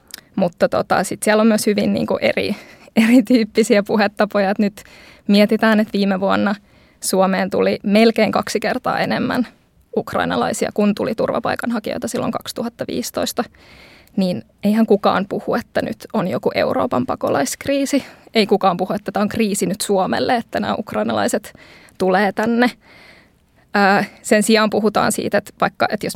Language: Finnish